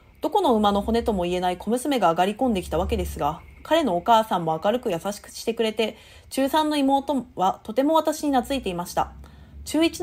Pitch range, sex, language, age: 190-280 Hz, female, Japanese, 30-49